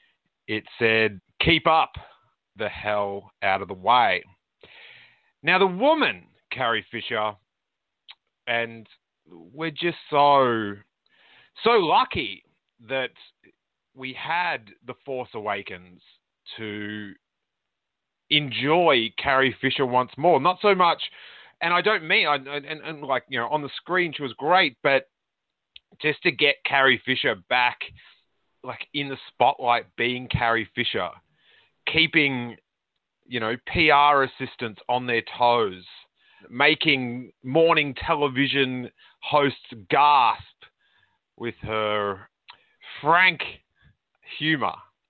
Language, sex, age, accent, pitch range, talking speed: English, male, 30-49, Australian, 115-160 Hz, 110 wpm